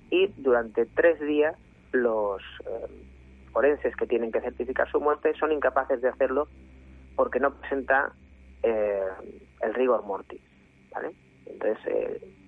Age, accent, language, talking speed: 30-49, Spanish, Spanish, 125 wpm